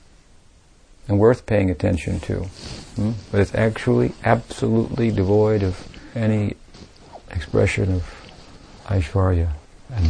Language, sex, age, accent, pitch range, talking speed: English, male, 50-69, American, 90-110 Hz, 100 wpm